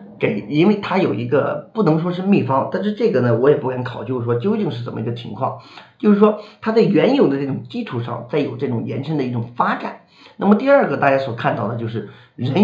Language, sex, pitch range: Chinese, male, 120-200 Hz